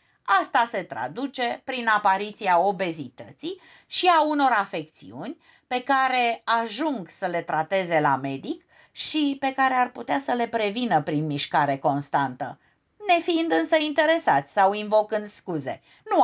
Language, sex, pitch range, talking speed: Romanian, female, 170-285 Hz, 135 wpm